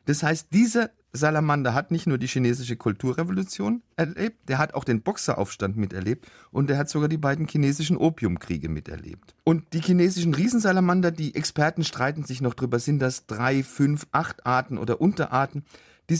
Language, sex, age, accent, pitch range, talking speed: German, male, 40-59, German, 120-160 Hz, 165 wpm